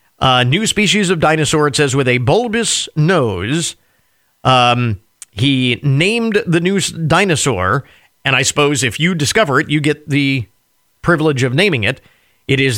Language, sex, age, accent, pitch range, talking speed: English, male, 50-69, American, 130-190 Hz, 160 wpm